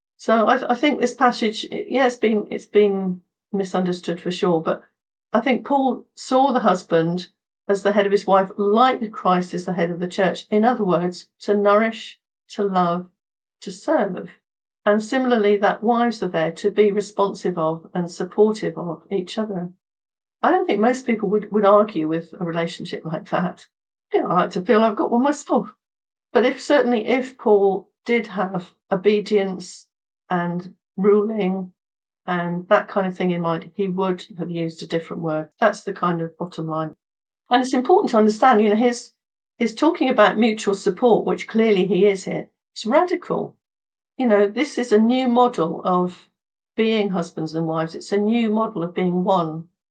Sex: female